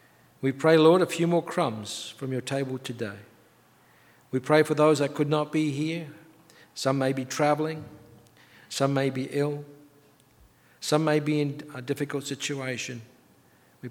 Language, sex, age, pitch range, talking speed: English, male, 60-79, 125-150 Hz, 155 wpm